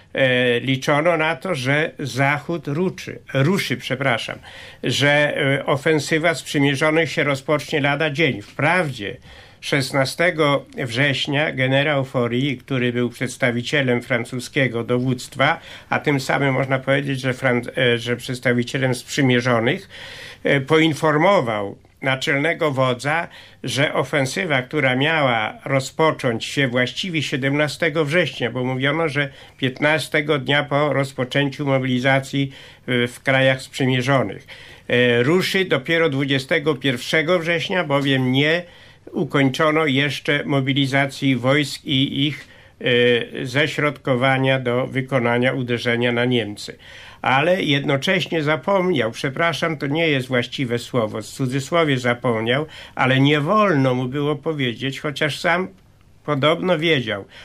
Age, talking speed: 60-79, 100 wpm